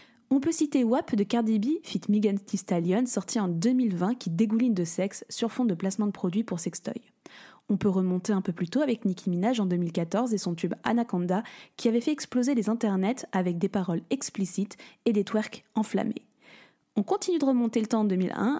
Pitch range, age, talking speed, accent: 195-250 Hz, 20-39, 205 wpm, French